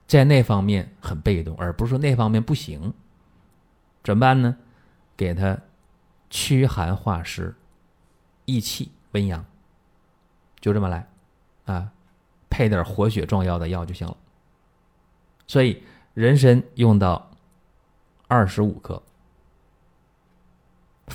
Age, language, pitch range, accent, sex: 20-39, Chinese, 90-120 Hz, native, male